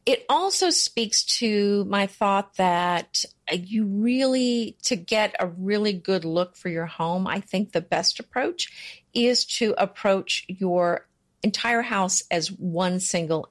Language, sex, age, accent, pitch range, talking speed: English, female, 50-69, American, 175-230 Hz, 140 wpm